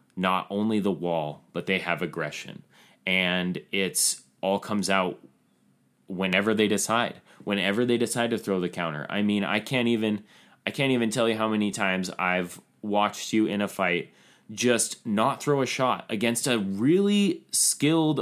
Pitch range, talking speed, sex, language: 95-115 Hz, 170 wpm, male, English